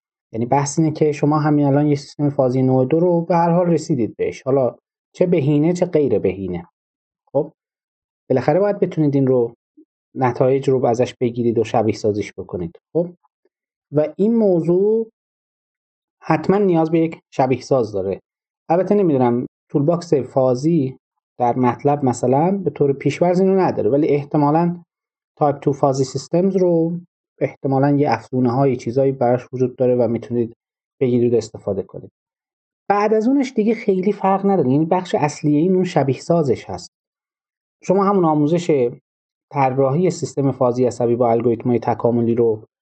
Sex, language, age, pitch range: male, Persian, 30-49, 125-170 Hz